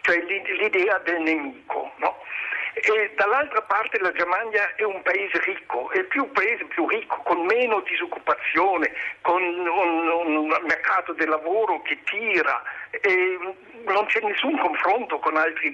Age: 60-79